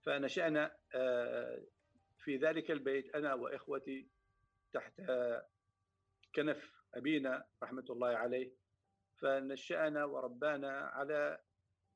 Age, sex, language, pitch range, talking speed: 50-69, male, Arabic, 125-175 Hz, 75 wpm